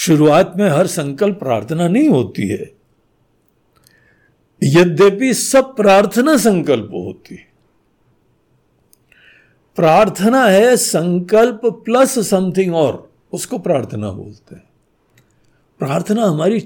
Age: 60-79